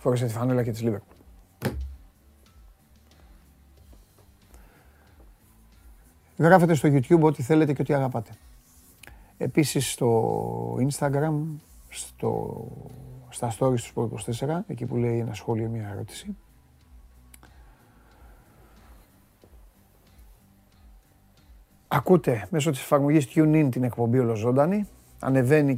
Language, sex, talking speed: Greek, male, 90 wpm